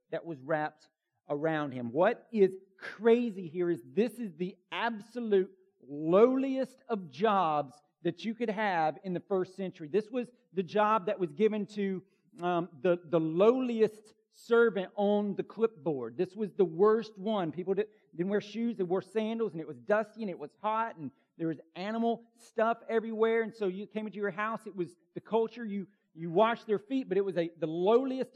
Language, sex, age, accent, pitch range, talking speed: English, male, 40-59, American, 175-220 Hz, 190 wpm